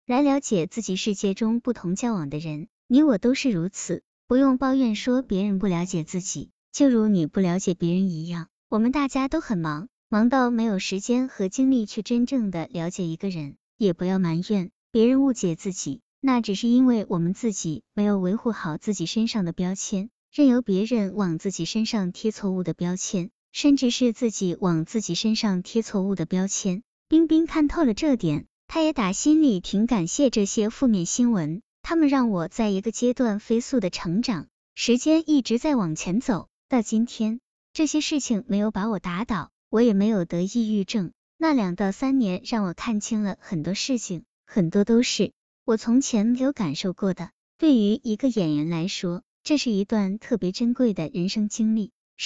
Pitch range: 185-245 Hz